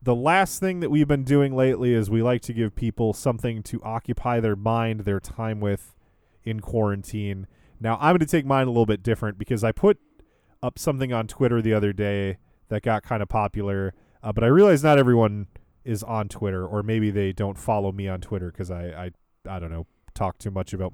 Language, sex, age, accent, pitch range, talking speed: English, male, 20-39, American, 100-145 Hz, 210 wpm